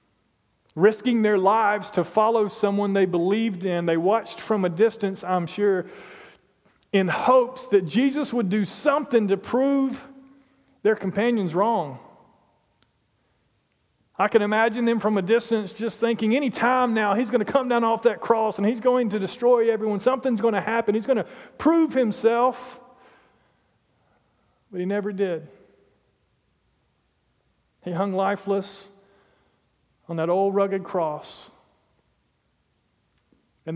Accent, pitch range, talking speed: American, 155-220 Hz, 135 wpm